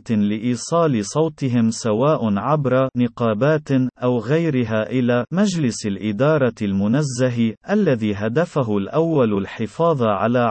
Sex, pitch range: male, 110-150 Hz